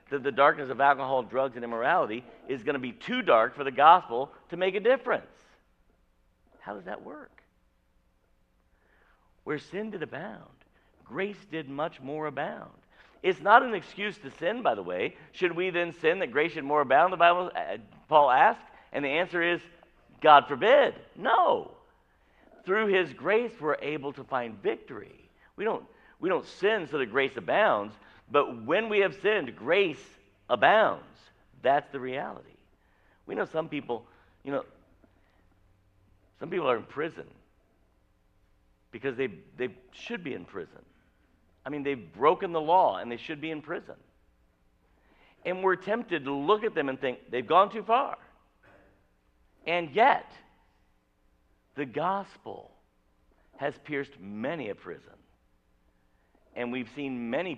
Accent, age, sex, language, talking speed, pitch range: American, 50-69, male, English, 155 wpm, 110-180 Hz